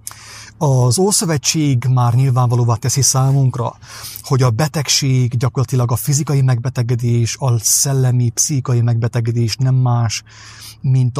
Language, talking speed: English, 105 wpm